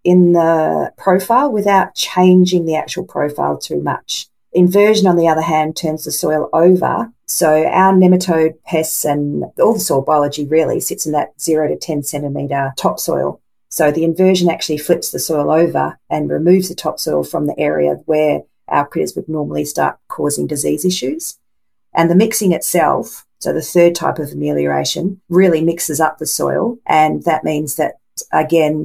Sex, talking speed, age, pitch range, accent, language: female, 170 wpm, 40-59, 150-180 Hz, Australian, English